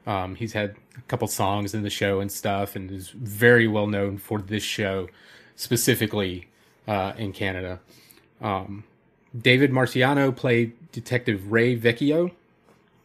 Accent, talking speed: American, 140 wpm